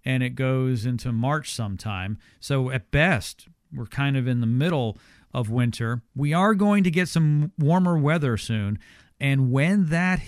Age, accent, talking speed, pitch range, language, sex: 40-59, American, 170 wpm, 115-150 Hz, English, male